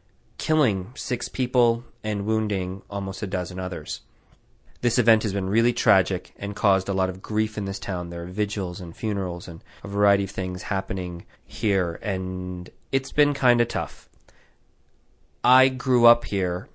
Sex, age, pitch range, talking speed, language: male, 30-49, 95-115 Hz, 165 wpm, English